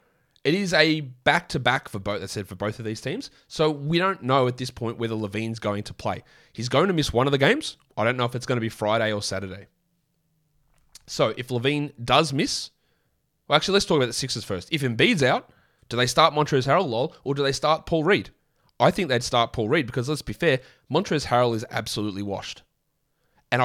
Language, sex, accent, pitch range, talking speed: English, male, Australian, 115-160 Hz, 230 wpm